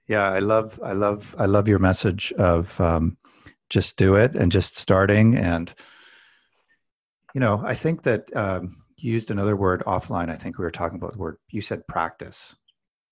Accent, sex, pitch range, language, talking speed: American, male, 90-115 Hz, English, 185 wpm